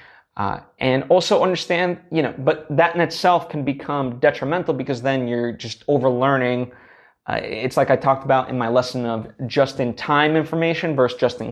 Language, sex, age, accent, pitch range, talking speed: English, male, 20-39, American, 125-150 Hz, 175 wpm